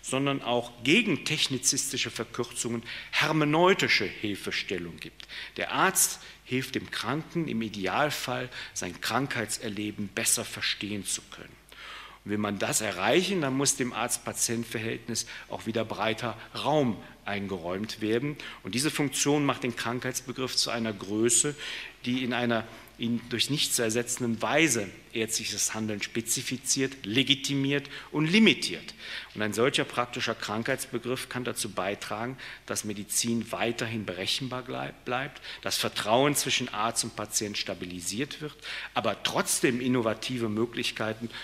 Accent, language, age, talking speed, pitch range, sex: German, German, 40-59, 120 wpm, 105-130 Hz, male